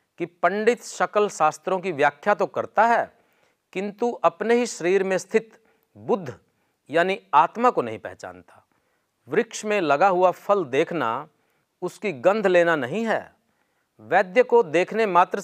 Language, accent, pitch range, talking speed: Hindi, native, 150-190 Hz, 140 wpm